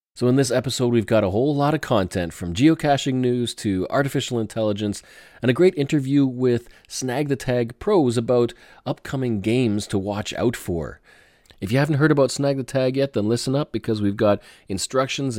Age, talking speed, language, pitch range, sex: 30-49, 190 wpm, English, 95-130 Hz, male